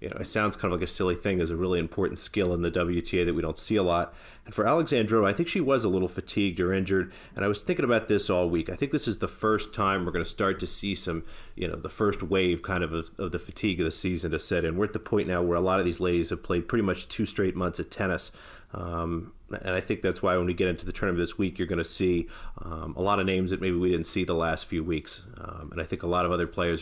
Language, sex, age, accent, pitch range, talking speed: English, male, 40-59, American, 85-100 Hz, 305 wpm